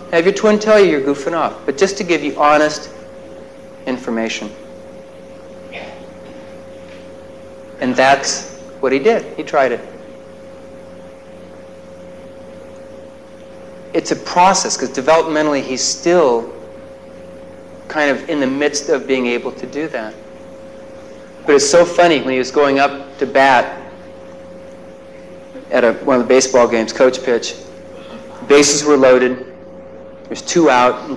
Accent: American